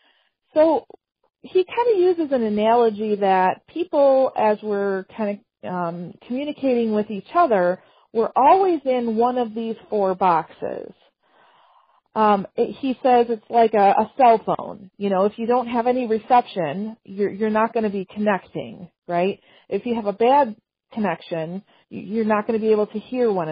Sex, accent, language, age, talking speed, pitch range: female, American, English, 40-59, 170 wpm, 200-255 Hz